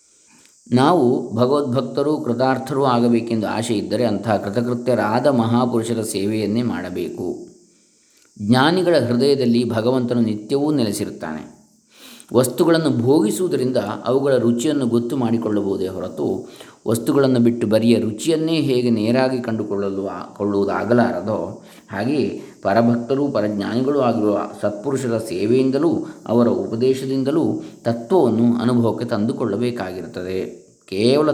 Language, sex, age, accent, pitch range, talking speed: Kannada, male, 20-39, native, 110-130 Hz, 80 wpm